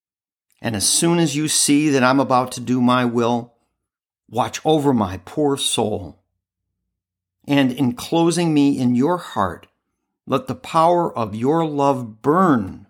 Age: 60-79